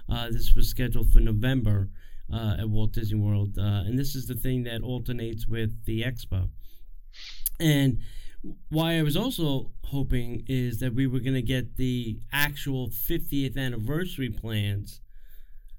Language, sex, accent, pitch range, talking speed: English, male, American, 110-135 Hz, 155 wpm